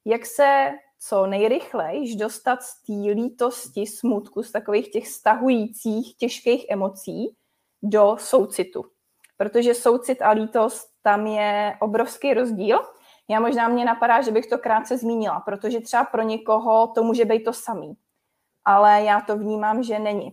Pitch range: 215-255 Hz